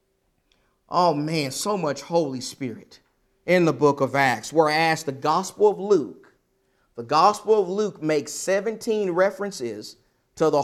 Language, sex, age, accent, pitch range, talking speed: English, male, 40-59, American, 140-190 Hz, 140 wpm